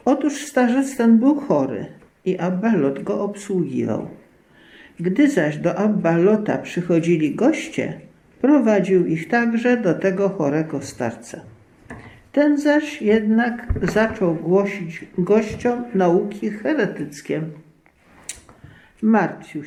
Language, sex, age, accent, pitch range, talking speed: Polish, male, 50-69, native, 165-220 Hz, 95 wpm